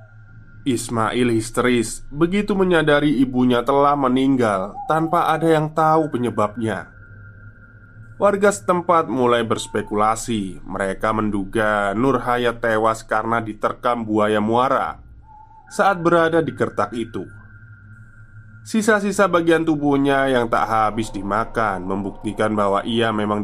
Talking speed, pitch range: 105 wpm, 110-130 Hz